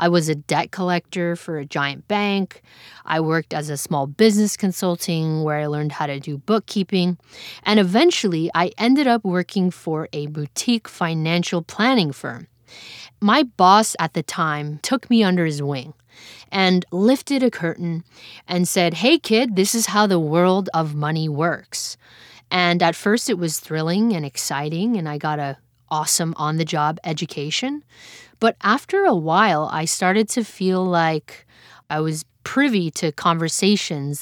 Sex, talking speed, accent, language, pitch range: female, 160 wpm, American, English, 155-200 Hz